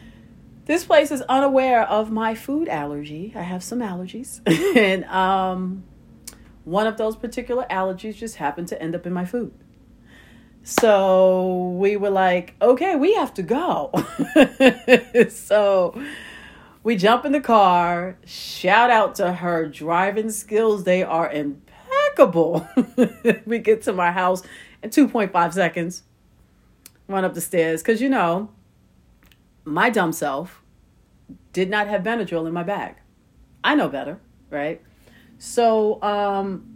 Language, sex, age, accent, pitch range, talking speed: English, female, 40-59, American, 180-245 Hz, 135 wpm